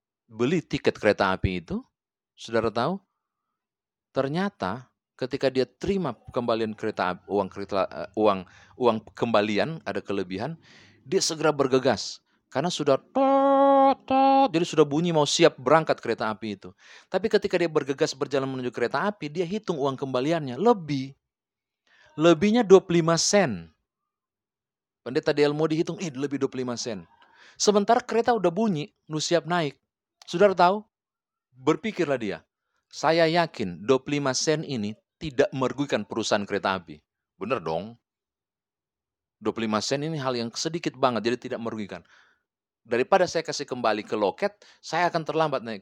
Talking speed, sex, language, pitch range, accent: 130 wpm, male, Indonesian, 115-175 Hz, native